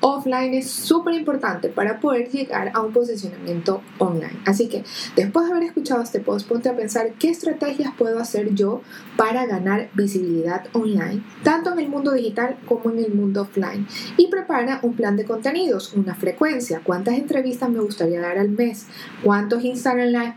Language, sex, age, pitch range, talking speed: Spanish, female, 20-39, 195-255 Hz, 175 wpm